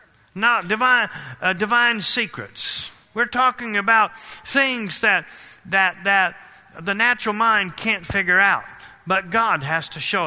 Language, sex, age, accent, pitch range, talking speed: English, male, 50-69, American, 165-220 Hz, 135 wpm